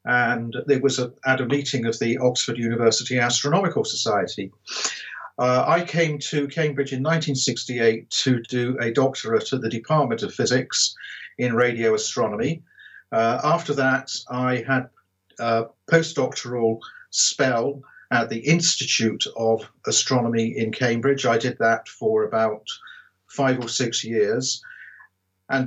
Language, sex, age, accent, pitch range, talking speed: English, male, 50-69, British, 120-145 Hz, 130 wpm